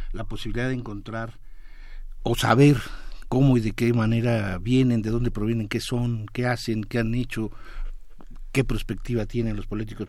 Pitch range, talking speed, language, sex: 100-125 Hz, 160 wpm, Spanish, male